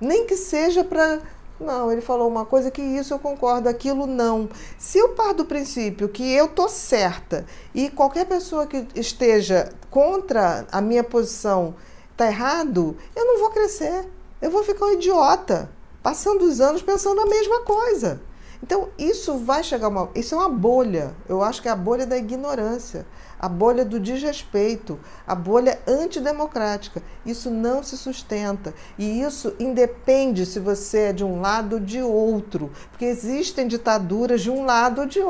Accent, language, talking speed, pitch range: Brazilian, Portuguese, 170 wpm, 210-285 Hz